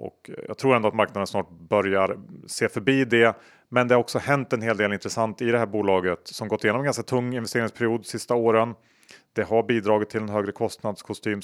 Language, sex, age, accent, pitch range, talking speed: Swedish, male, 30-49, Norwegian, 100-115 Hz, 210 wpm